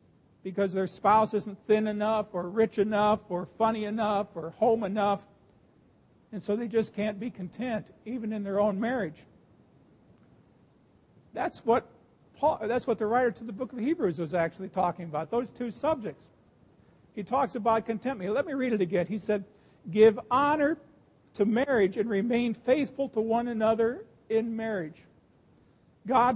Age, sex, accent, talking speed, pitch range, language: 50-69, male, American, 155 wpm, 200-235 Hz, English